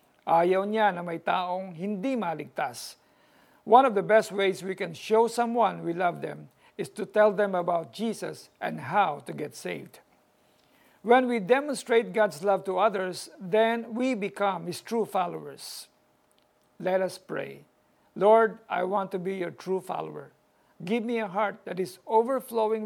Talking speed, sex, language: 160 wpm, male, Filipino